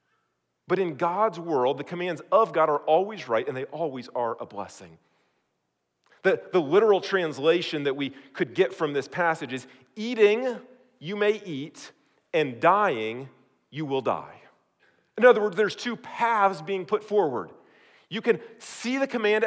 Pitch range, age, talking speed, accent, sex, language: 165-225 Hz, 40-59, 160 wpm, American, male, English